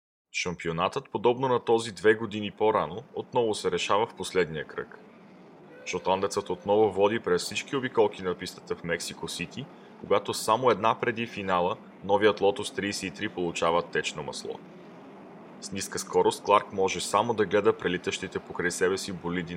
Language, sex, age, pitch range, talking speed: Bulgarian, male, 20-39, 95-120 Hz, 145 wpm